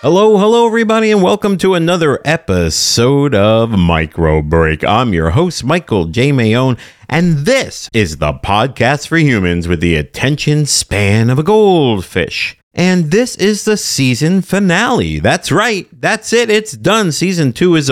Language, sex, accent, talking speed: English, male, American, 155 wpm